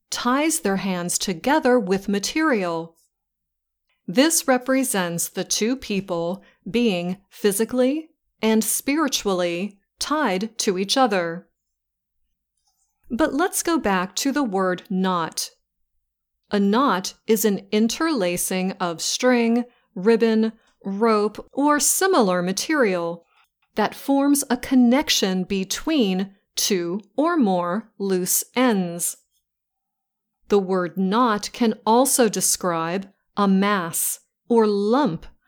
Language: English